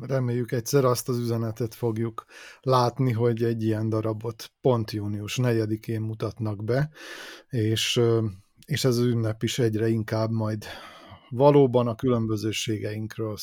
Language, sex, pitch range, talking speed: Hungarian, male, 110-125 Hz, 125 wpm